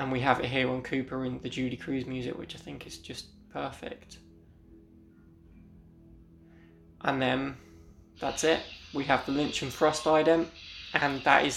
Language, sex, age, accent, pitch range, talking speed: English, male, 20-39, British, 95-145 Hz, 165 wpm